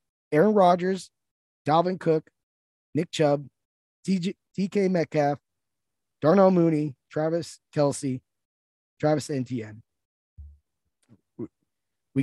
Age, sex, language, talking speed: 20-39, male, English, 75 wpm